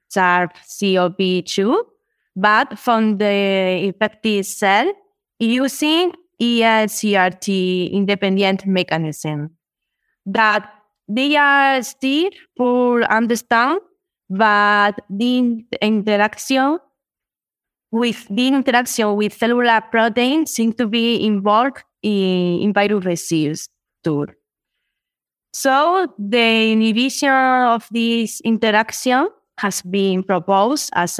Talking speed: 85 wpm